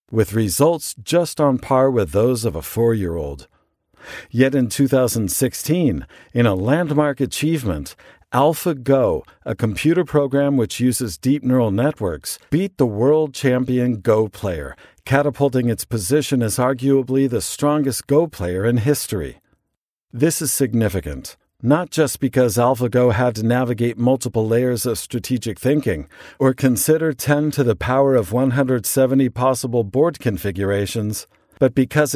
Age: 50-69